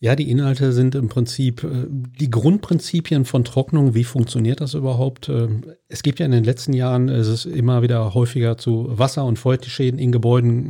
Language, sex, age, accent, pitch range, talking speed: German, male, 40-59, German, 120-135 Hz, 180 wpm